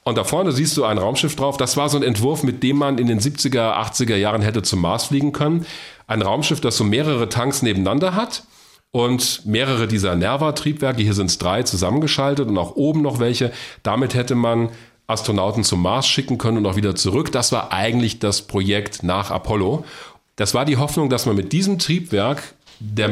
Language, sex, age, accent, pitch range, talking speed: German, male, 40-59, German, 105-140 Hz, 200 wpm